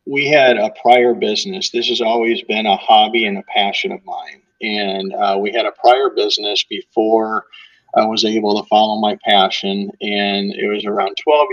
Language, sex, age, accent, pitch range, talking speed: English, male, 40-59, American, 100-125 Hz, 185 wpm